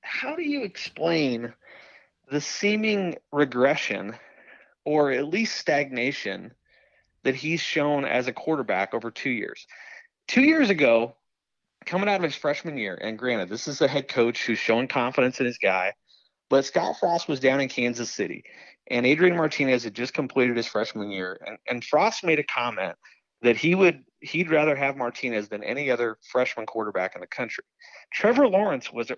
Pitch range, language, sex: 125-195 Hz, English, male